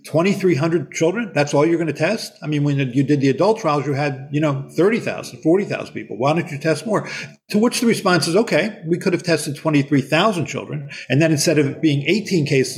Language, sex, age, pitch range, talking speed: English, male, 50-69, 135-165 Hz, 220 wpm